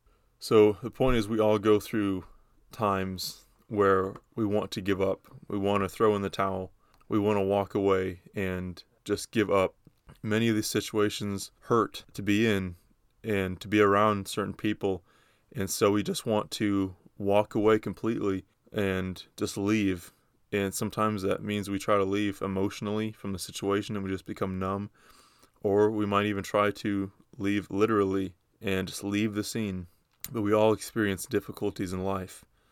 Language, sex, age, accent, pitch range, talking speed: English, male, 20-39, American, 95-105 Hz, 170 wpm